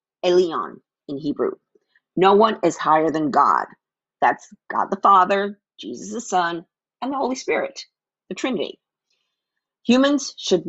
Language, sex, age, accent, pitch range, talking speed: English, female, 50-69, American, 155-215 Hz, 135 wpm